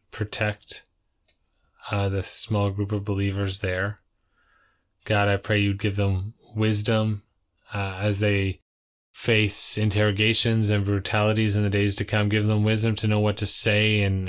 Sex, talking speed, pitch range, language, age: male, 150 wpm, 100-115 Hz, English, 20-39